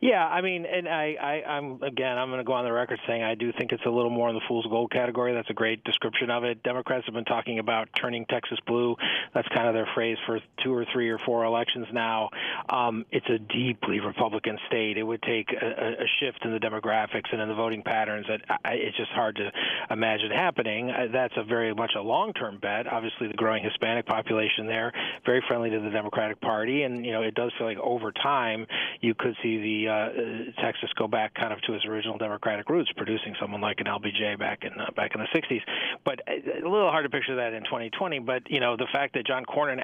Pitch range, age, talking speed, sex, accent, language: 110-125 Hz, 30-49, 235 wpm, male, American, English